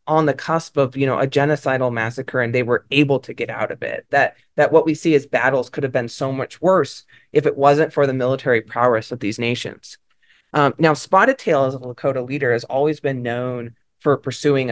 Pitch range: 120-145 Hz